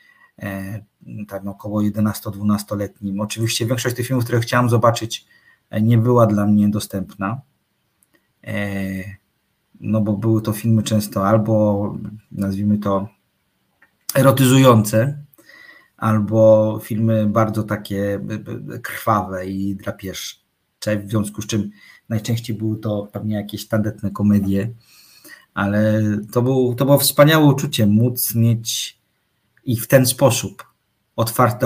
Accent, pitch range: native, 100-115 Hz